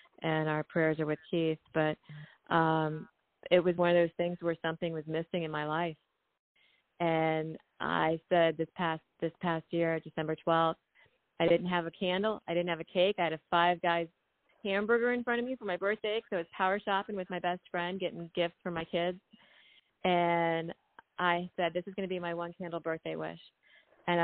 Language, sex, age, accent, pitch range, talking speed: English, female, 30-49, American, 165-190 Hz, 200 wpm